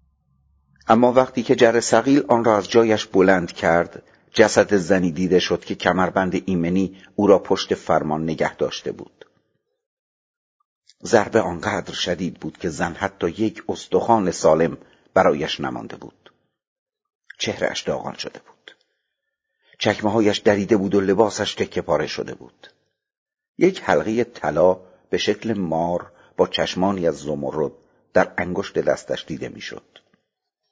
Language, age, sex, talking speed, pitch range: Persian, 50-69, male, 130 wpm, 90-110 Hz